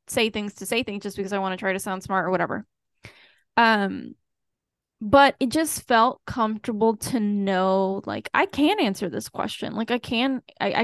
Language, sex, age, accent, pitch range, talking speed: English, female, 10-29, American, 200-245 Hz, 190 wpm